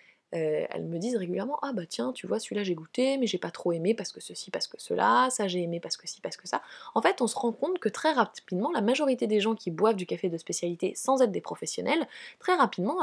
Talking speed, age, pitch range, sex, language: 265 wpm, 20-39, 180-255 Hz, female, French